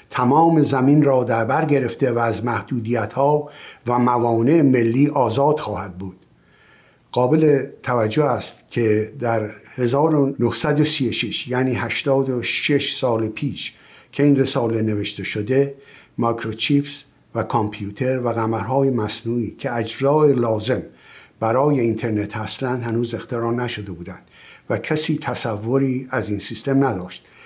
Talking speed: 120 wpm